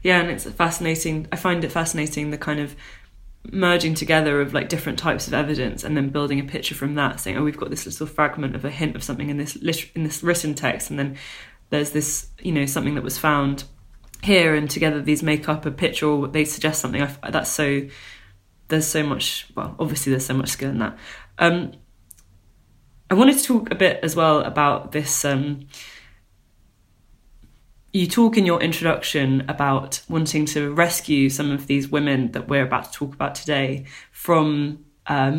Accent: British